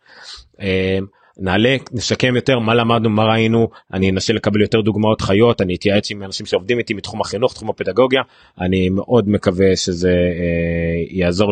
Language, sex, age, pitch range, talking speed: Hebrew, male, 30-49, 90-110 Hz, 150 wpm